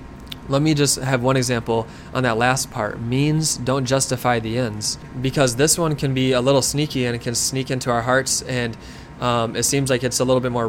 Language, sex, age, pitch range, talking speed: English, male, 20-39, 120-145 Hz, 225 wpm